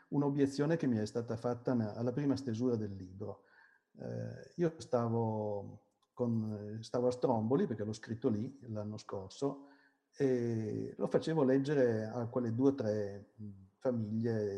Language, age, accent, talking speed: Italian, 60-79, native, 135 wpm